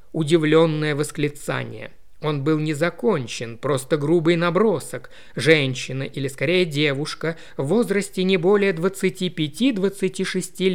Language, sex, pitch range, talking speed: Russian, male, 150-190 Hz, 95 wpm